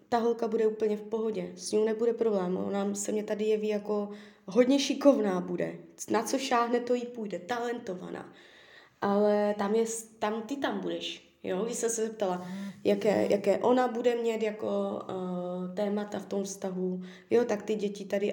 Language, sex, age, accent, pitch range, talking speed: Czech, female, 20-39, native, 180-215 Hz, 175 wpm